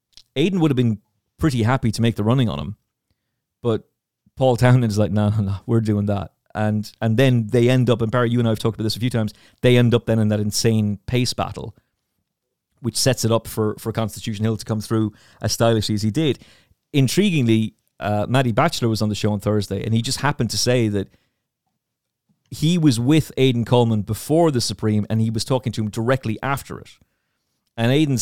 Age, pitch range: 30-49, 105-125 Hz